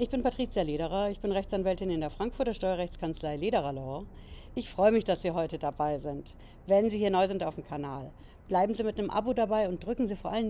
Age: 60-79